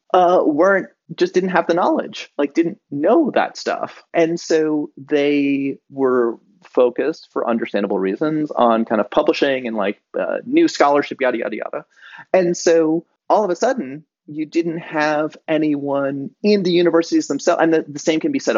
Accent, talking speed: American, 170 wpm